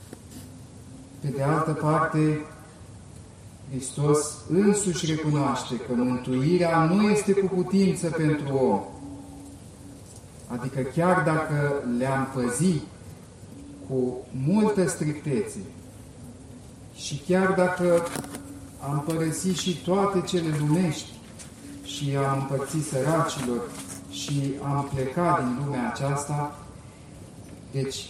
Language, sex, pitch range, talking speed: Romanian, male, 120-155 Hz, 90 wpm